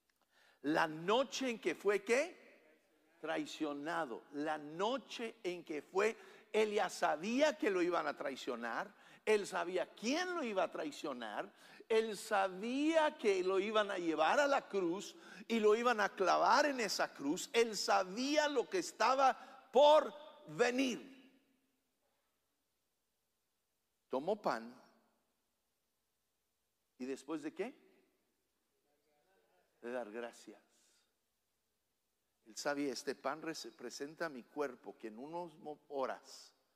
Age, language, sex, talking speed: 50-69, English, male, 120 wpm